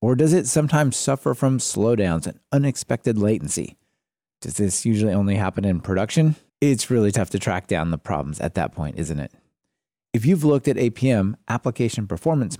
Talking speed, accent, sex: 175 wpm, American, male